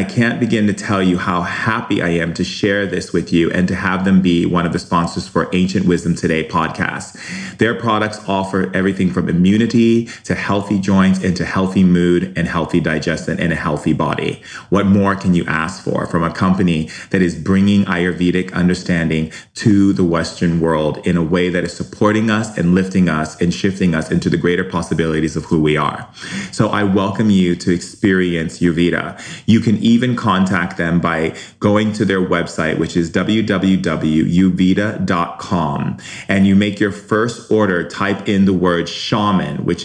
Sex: male